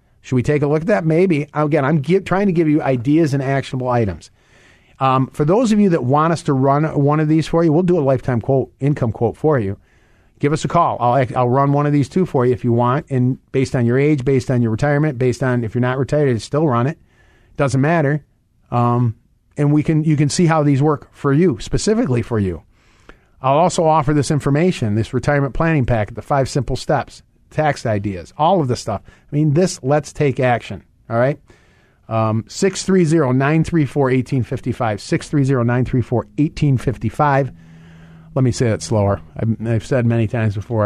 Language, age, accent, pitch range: English, 40-59, American, 115-150 Hz